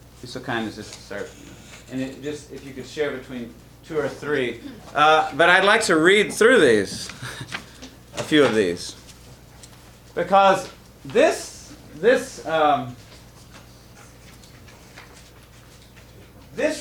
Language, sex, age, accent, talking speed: English, male, 40-59, American, 120 wpm